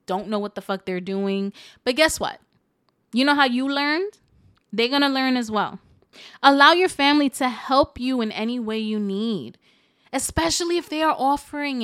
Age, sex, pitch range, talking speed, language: 20-39, female, 200-280 Hz, 180 wpm, English